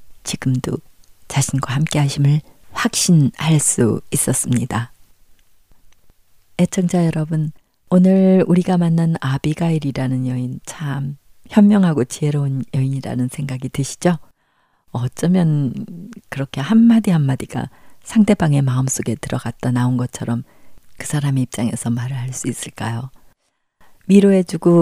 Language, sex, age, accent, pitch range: Korean, female, 40-59, native, 125-175 Hz